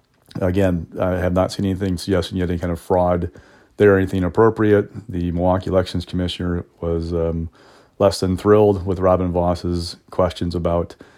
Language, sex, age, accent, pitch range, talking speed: English, male, 40-59, American, 90-100 Hz, 155 wpm